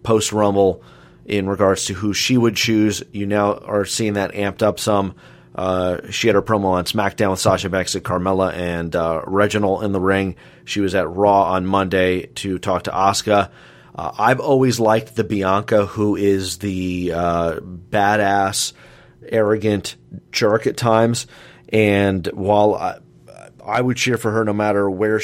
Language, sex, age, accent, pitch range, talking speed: English, male, 30-49, American, 90-105 Hz, 170 wpm